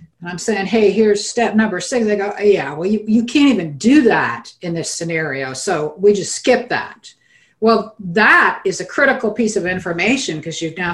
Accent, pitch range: American, 160-215 Hz